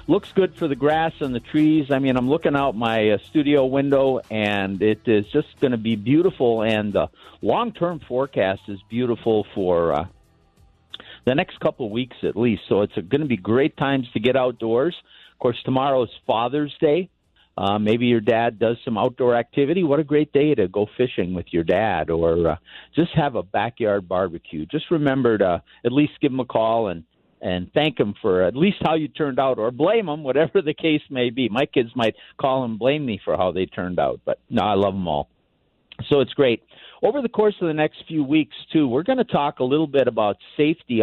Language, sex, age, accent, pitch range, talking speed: English, male, 50-69, American, 115-150 Hz, 215 wpm